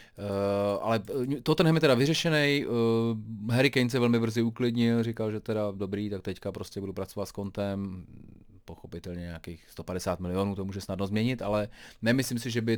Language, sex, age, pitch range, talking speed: Czech, male, 30-49, 95-115 Hz, 175 wpm